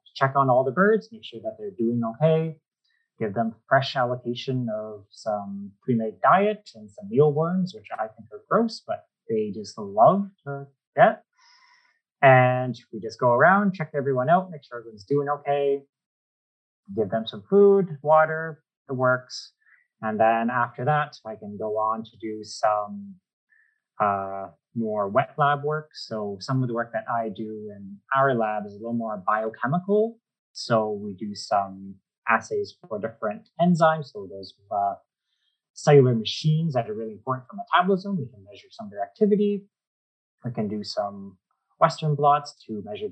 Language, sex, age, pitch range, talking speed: English, male, 30-49, 110-185 Hz, 165 wpm